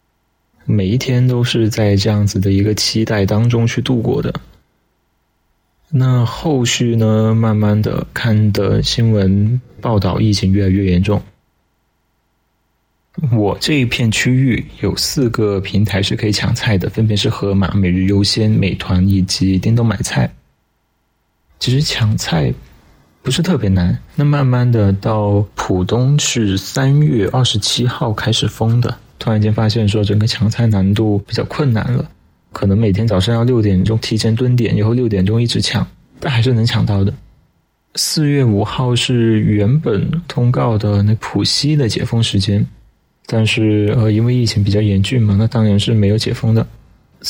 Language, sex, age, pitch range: Chinese, male, 20-39, 100-125 Hz